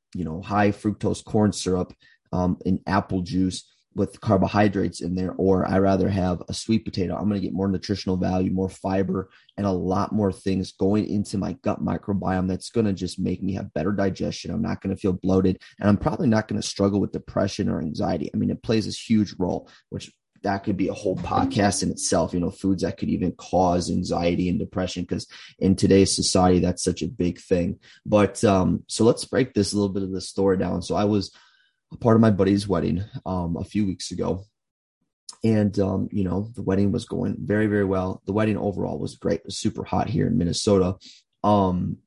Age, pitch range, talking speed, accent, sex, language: 30-49, 95-105 Hz, 215 wpm, American, male, English